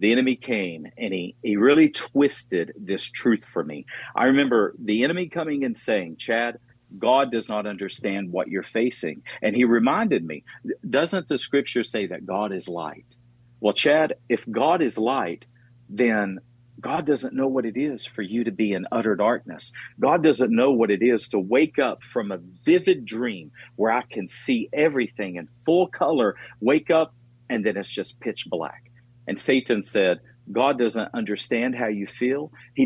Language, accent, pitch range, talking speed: English, American, 110-130 Hz, 180 wpm